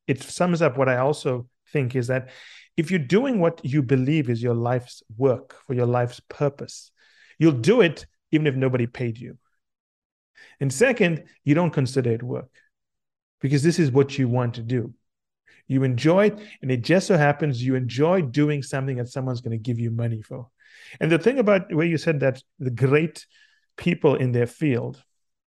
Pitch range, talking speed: 125-160 Hz, 190 wpm